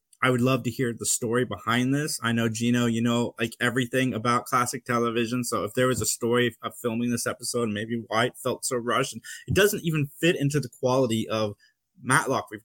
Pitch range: 115-135 Hz